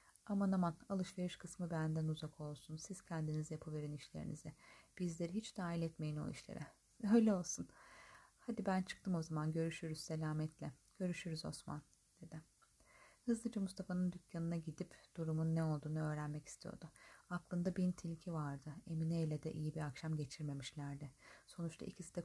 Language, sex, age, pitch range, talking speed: Turkish, female, 30-49, 150-180 Hz, 140 wpm